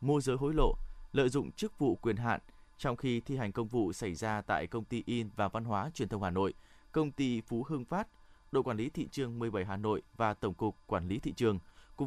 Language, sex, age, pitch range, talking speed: Vietnamese, male, 20-39, 110-140 Hz, 255 wpm